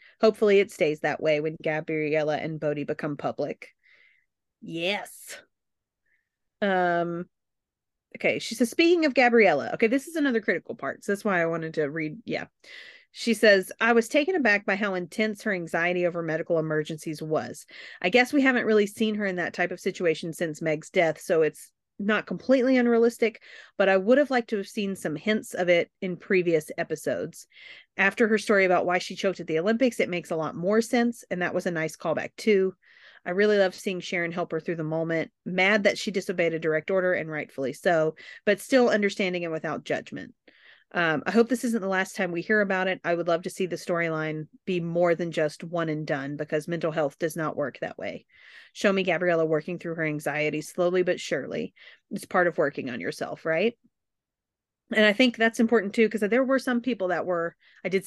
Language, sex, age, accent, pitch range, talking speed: English, female, 30-49, American, 160-215 Hz, 205 wpm